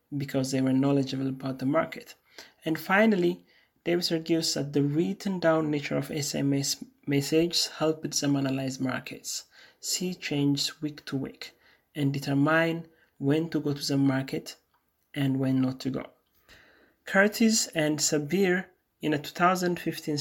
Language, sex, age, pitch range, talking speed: English, male, 30-49, 140-165 Hz, 140 wpm